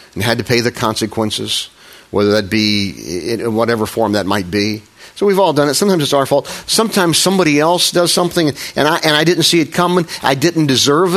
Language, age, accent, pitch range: English, 50-69, American, 110-150 Hz